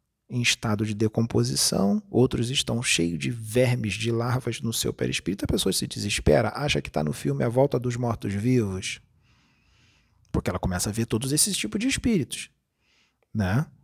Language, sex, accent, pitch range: Portuguese, male, Brazilian, 100-150 Hz